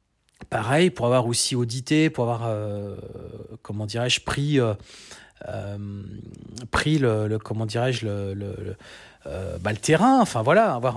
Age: 40-59